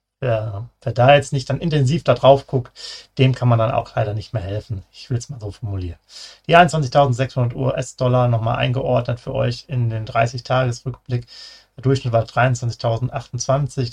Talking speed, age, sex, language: 170 wpm, 40-59, male, German